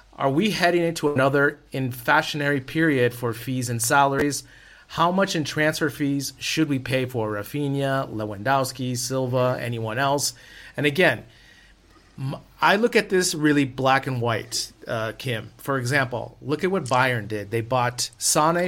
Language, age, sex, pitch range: English, 30-49, male, 120-150 Hz